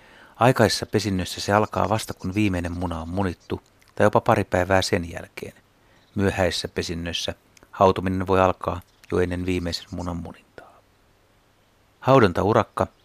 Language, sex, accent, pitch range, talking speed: Finnish, male, native, 90-105 Hz, 125 wpm